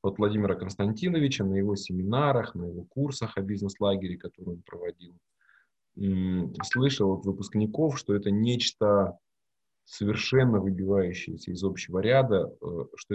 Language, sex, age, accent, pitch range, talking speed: Russian, male, 20-39, native, 95-115 Hz, 120 wpm